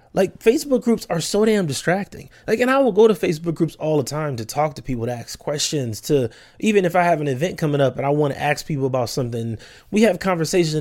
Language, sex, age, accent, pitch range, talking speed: English, male, 20-39, American, 135-180 Hz, 250 wpm